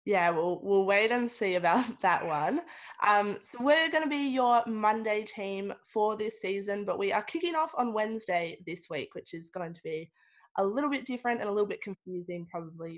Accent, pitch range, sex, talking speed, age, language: Australian, 190-240 Hz, female, 210 wpm, 20-39, English